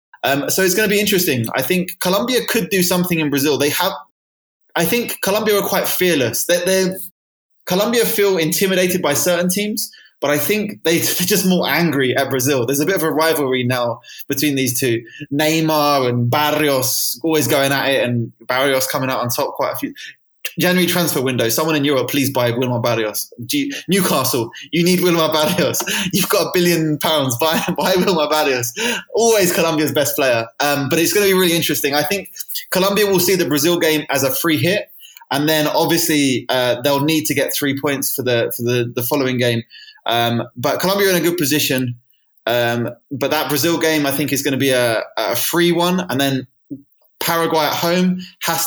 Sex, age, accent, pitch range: male, 20-39, British, 135-180 Hz